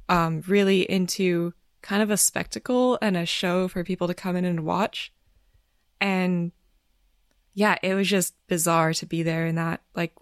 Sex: female